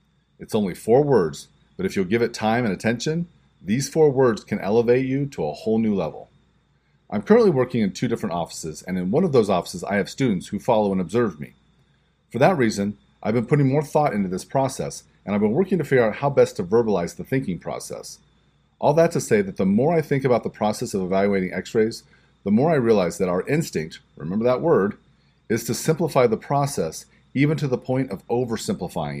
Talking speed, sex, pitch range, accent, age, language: 215 wpm, male, 100-150 Hz, American, 40-59, English